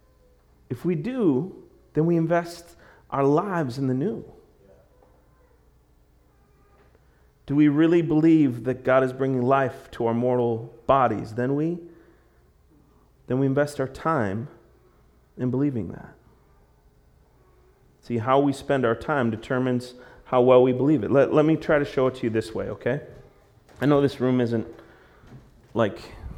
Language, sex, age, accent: English, male, 30-49, American